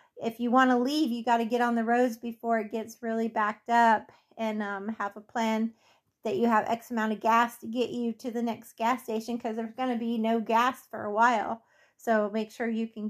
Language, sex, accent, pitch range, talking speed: English, female, American, 220-235 Hz, 245 wpm